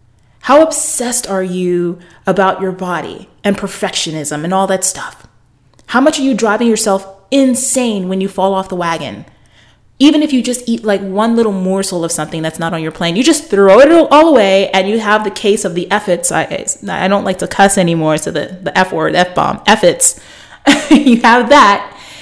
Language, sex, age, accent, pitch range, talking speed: English, female, 30-49, American, 190-260 Hz, 200 wpm